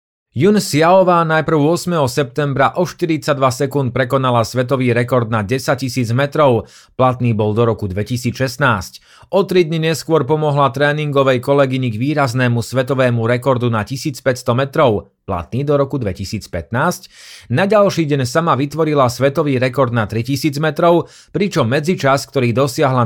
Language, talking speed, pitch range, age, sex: Slovak, 135 wpm, 120-155 Hz, 30-49, male